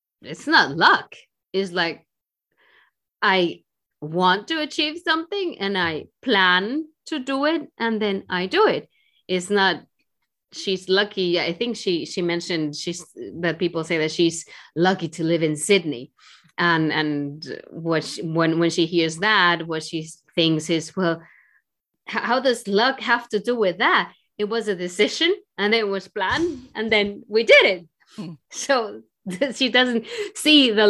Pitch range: 170-230 Hz